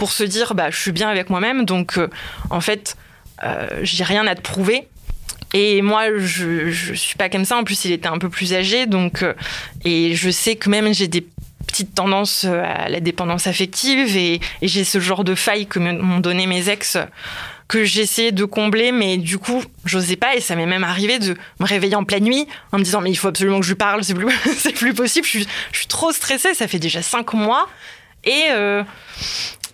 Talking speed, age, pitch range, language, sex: 225 wpm, 20-39, 185-215 Hz, French, female